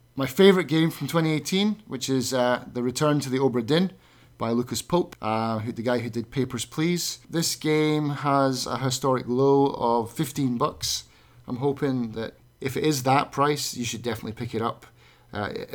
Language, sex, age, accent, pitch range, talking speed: English, male, 30-49, British, 120-140 Hz, 185 wpm